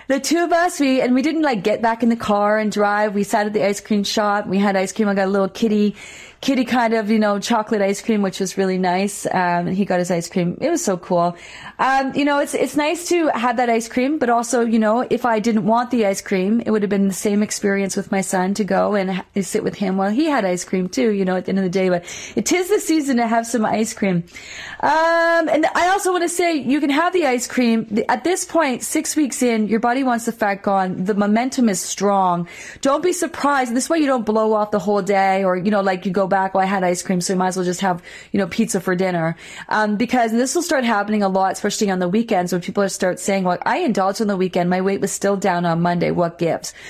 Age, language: 30-49, English